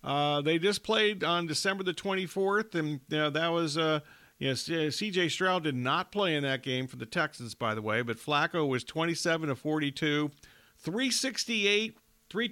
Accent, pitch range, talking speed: American, 145-185 Hz, 185 wpm